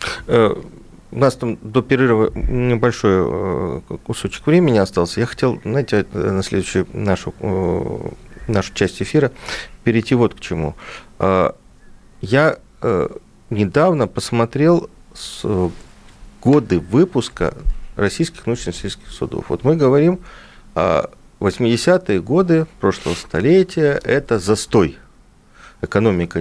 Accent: native